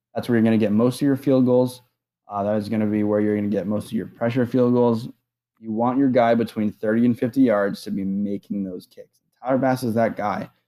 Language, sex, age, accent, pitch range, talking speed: English, male, 20-39, American, 105-125 Hz, 245 wpm